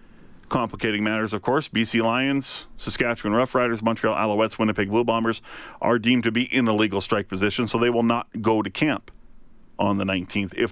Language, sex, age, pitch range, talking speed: English, male, 40-59, 100-120 Hz, 190 wpm